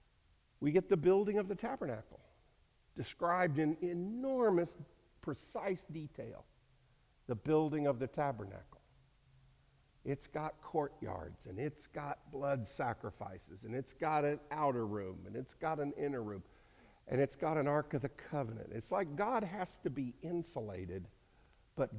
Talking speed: 145 wpm